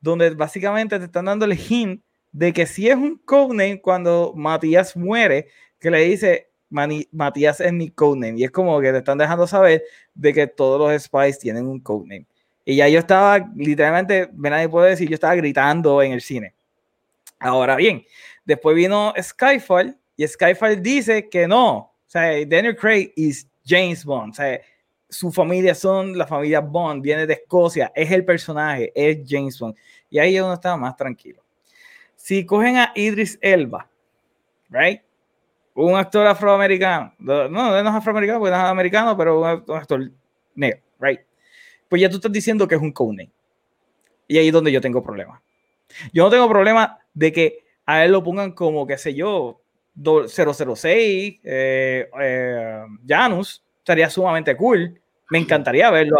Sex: male